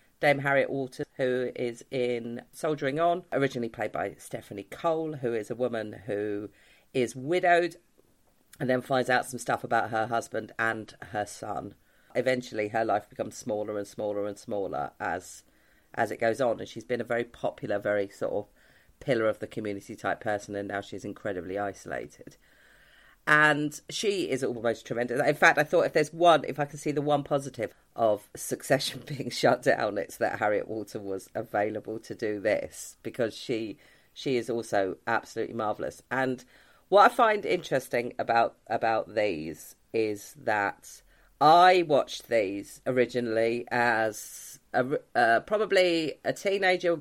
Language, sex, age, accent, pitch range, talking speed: English, female, 40-59, British, 110-145 Hz, 160 wpm